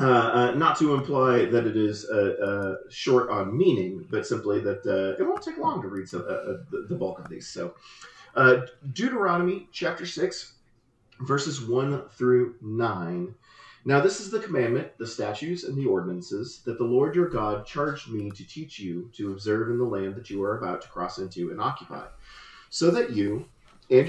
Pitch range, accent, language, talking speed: 100-145 Hz, American, English, 190 wpm